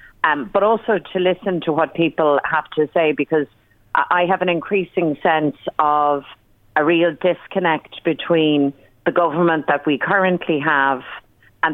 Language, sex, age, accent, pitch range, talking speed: English, female, 40-59, Irish, 145-170 Hz, 150 wpm